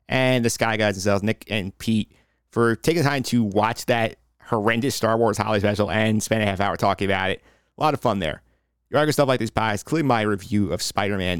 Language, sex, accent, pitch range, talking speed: English, male, American, 100-115 Hz, 225 wpm